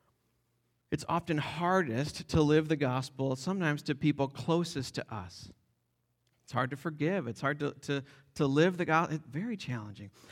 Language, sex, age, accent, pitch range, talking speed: English, male, 40-59, American, 125-170 Hz, 155 wpm